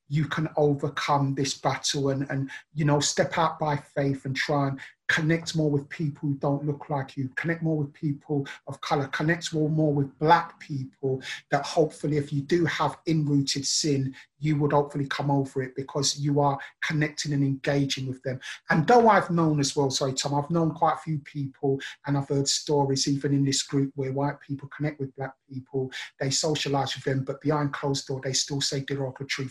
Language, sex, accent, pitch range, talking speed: English, male, British, 140-155 Hz, 200 wpm